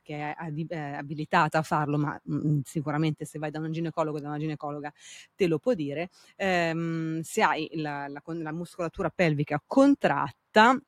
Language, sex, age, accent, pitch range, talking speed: Italian, female, 30-49, native, 150-175 Hz, 160 wpm